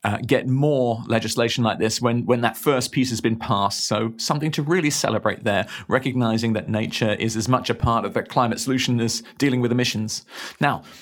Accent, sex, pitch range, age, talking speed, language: British, male, 115-150 Hz, 40-59, 200 wpm, English